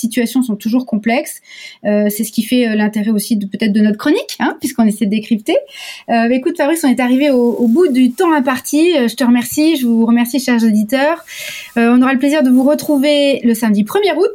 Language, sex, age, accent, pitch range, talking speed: French, female, 30-49, French, 200-255 Hz, 220 wpm